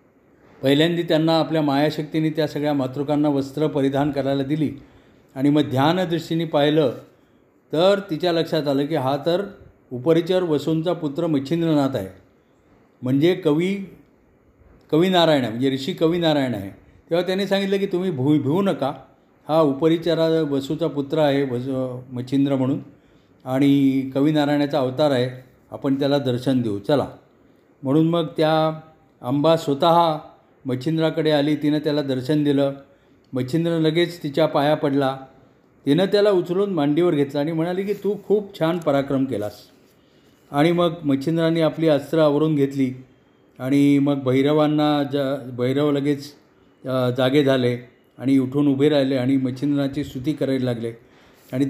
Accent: native